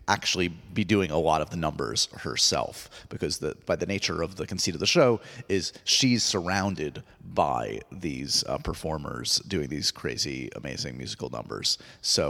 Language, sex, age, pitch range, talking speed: English, male, 30-49, 95-130 Hz, 165 wpm